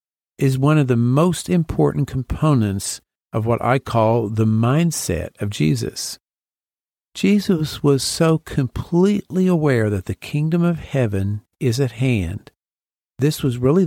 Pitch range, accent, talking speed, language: 110-155 Hz, American, 135 wpm, English